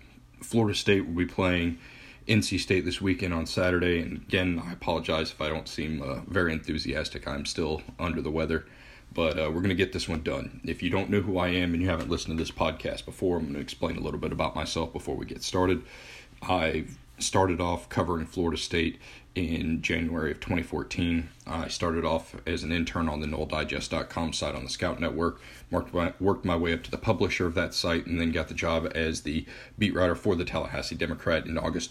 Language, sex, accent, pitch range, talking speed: English, male, American, 80-95 Hz, 215 wpm